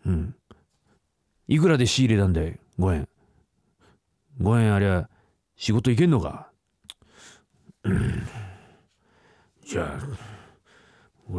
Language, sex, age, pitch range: Japanese, male, 40-59, 90-130 Hz